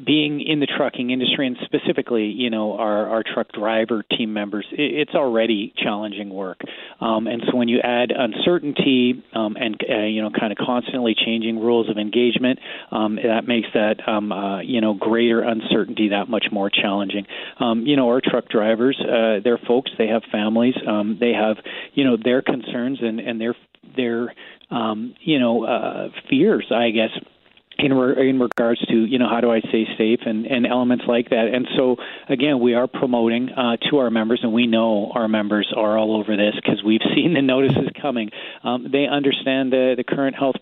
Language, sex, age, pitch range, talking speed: English, male, 40-59, 110-125 Hz, 190 wpm